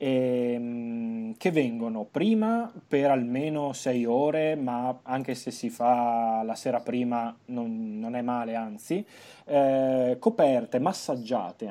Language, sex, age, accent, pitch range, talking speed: Italian, male, 20-39, native, 120-160 Hz, 120 wpm